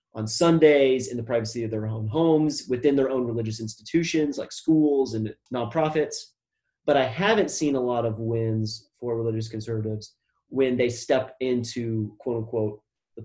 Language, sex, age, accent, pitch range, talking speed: English, male, 30-49, American, 115-145 Hz, 165 wpm